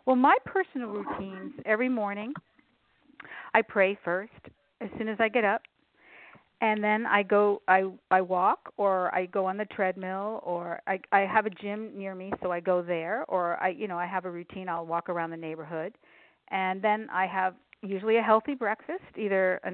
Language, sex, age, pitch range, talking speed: English, female, 50-69, 185-220 Hz, 190 wpm